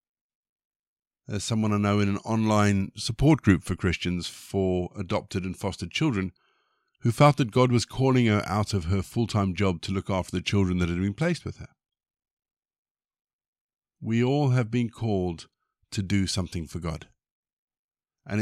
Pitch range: 90-115 Hz